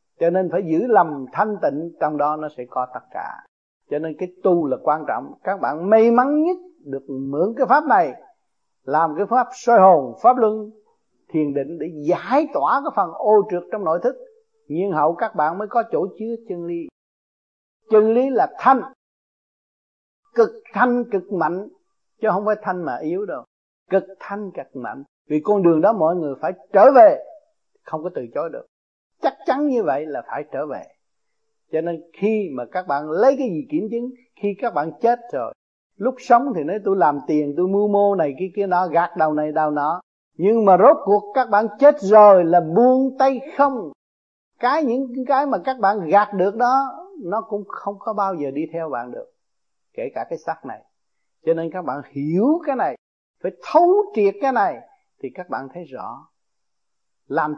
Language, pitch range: Vietnamese, 165-260 Hz